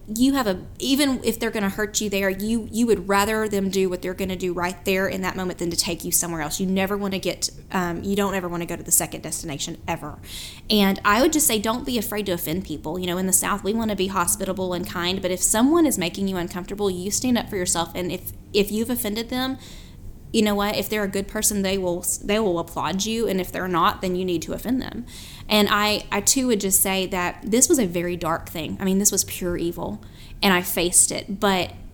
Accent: American